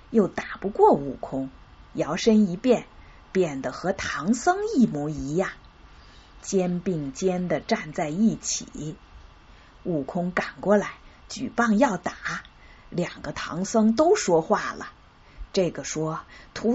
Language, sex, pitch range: Chinese, female, 160-230 Hz